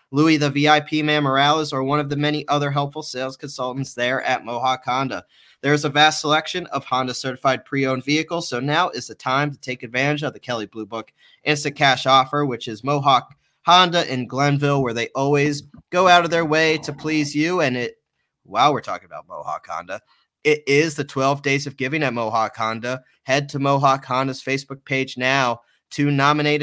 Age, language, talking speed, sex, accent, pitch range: 30-49, English, 200 wpm, male, American, 125-145 Hz